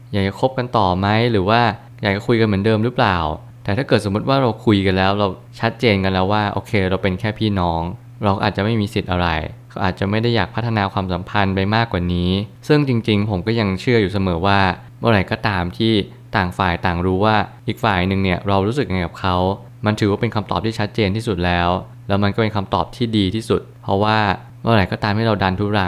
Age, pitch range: 20-39, 95-115 Hz